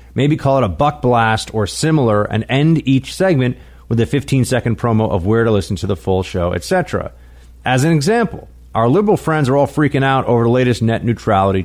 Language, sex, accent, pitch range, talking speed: English, male, American, 95-130 Hz, 205 wpm